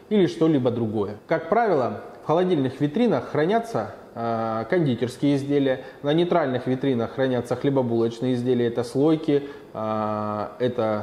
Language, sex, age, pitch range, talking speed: Russian, male, 20-39, 125-170 Hz, 110 wpm